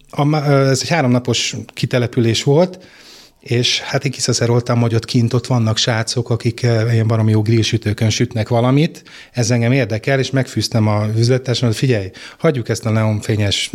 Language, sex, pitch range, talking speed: Hungarian, male, 110-130 Hz, 155 wpm